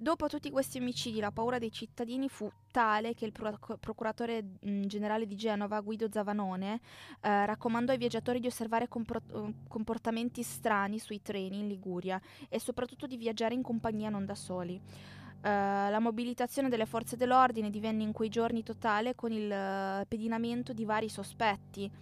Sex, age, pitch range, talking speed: female, 20-39, 190-230 Hz, 155 wpm